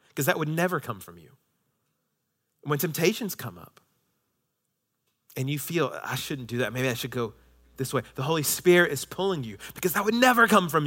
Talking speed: 200 wpm